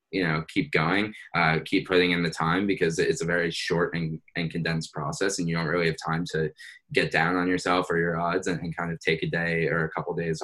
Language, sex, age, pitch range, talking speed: English, male, 10-29, 80-90 Hz, 260 wpm